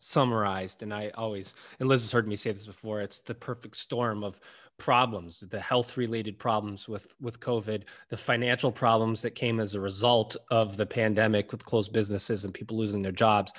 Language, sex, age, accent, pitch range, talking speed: English, male, 20-39, American, 105-125 Hz, 190 wpm